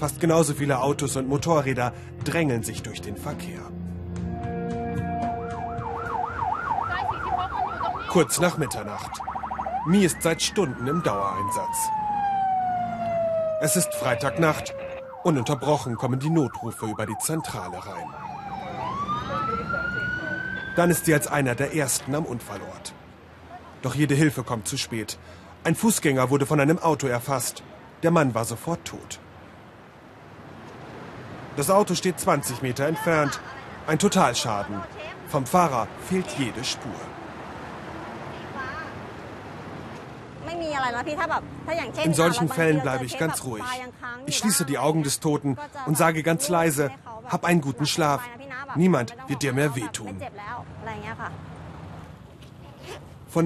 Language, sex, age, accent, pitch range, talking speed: German, male, 30-49, German, 125-175 Hz, 110 wpm